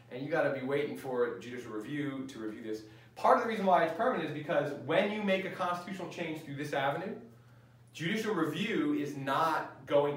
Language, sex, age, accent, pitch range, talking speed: English, male, 30-49, American, 130-175 Hz, 205 wpm